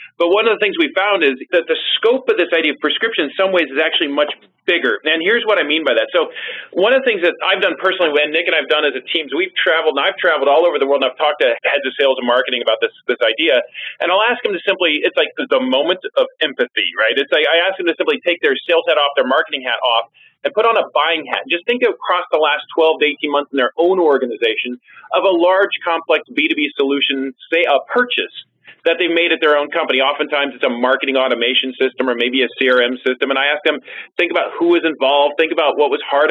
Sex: male